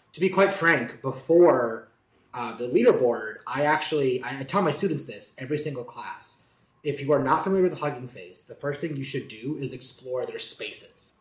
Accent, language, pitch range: American, English, 120-165 Hz